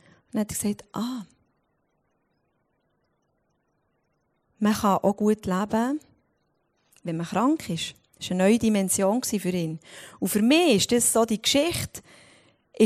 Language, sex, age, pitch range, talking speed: German, female, 30-49, 185-245 Hz, 135 wpm